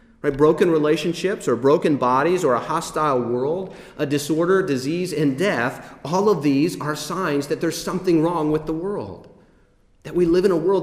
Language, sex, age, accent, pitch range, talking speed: English, male, 30-49, American, 140-170 Hz, 175 wpm